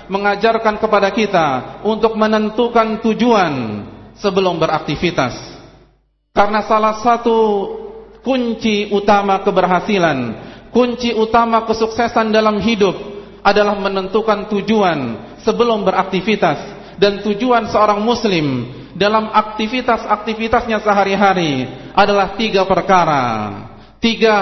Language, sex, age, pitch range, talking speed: Malay, male, 40-59, 185-225 Hz, 85 wpm